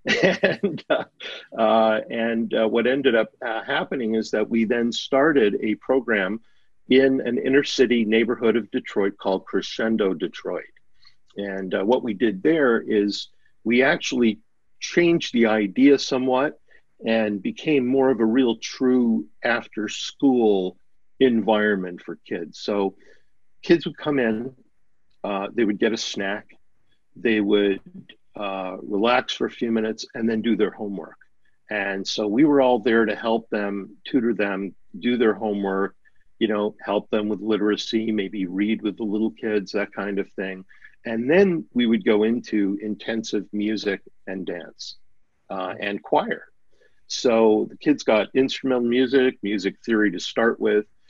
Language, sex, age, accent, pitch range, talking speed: English, male, 50-69, American, 105-125 Hz, 150 wpm